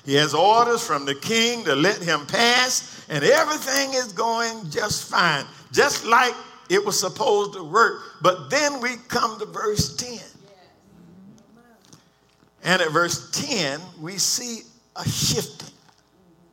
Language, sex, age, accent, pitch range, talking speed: English, male, 50-69, American, 155-230 Hz, 140 wpm